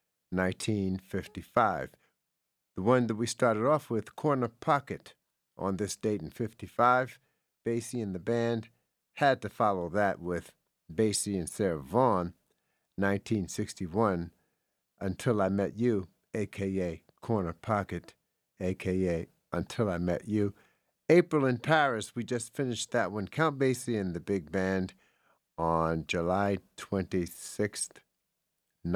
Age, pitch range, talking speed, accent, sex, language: 60-79, 90-120 Hz, 120 wpm, American, male, English